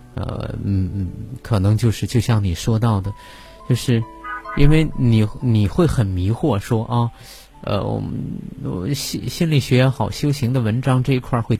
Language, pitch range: Chinese, 110-140 Hz